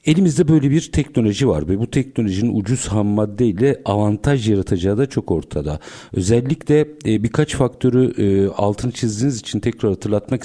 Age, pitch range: 50-69, 100-135 Hz